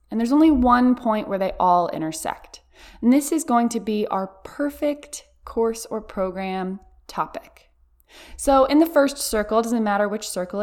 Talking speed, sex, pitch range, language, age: 170 wpm, female, 200-255 Hz, English, 20-39